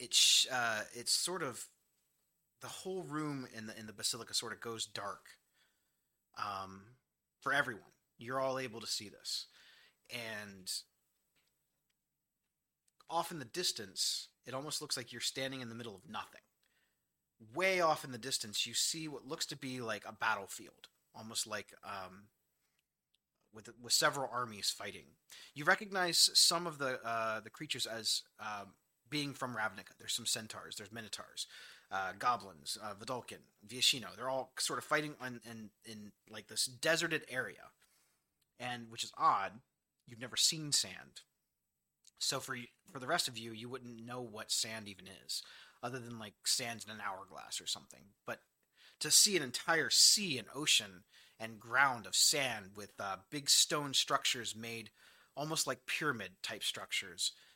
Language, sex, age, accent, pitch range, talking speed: English, male, 30-49, American, 110-140 Hz, 160 wpm